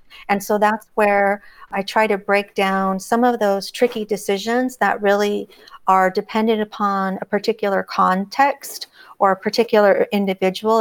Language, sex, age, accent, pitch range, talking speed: English, female, 40-59, American, 195-220 Hz, 145 wpm